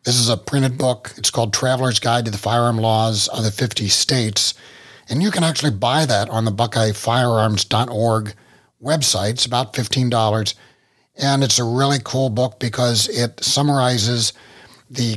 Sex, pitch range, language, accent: male, 110-140 Hz, English, American